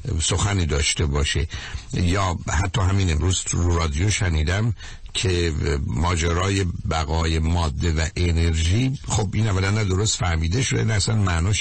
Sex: male